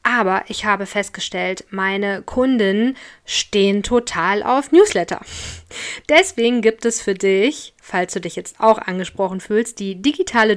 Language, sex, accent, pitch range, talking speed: German, female, German, 190-240 Hz, 135 wpm